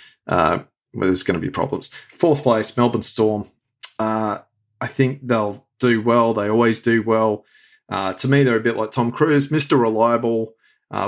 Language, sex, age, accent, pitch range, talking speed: English, male, 30-49, Australian, 110-130 Hz, 185 wpm